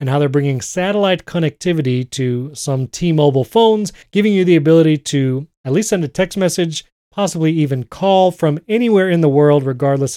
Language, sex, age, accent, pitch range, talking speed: English, male, 30-49, American, 140-180 Hz, 175 wpm